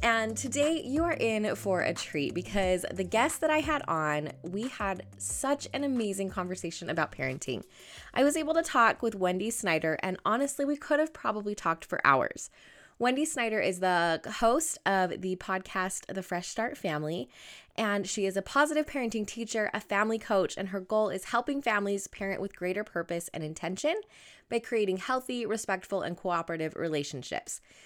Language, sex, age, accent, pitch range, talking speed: English, female, 20-39, American, 180-245 Hz, 175 wpm